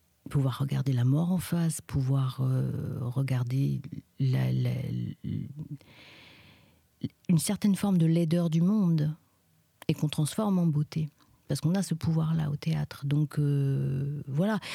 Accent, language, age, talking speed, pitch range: French, French, 50-69, 140 wpm, 140-175 Hz